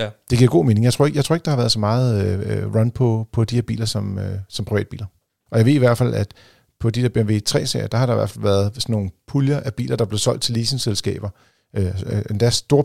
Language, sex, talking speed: Danish, male, 270 wpm